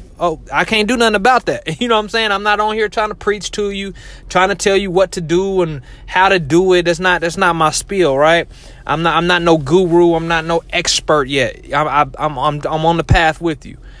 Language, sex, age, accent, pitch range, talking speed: English, male, 30-49, American, 140-185 Hz, 255 wpm